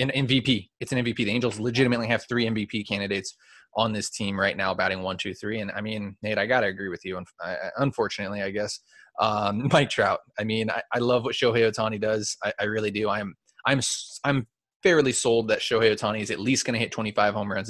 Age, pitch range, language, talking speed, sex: 20-39, 105-125 Hz, English, 225 wpm, male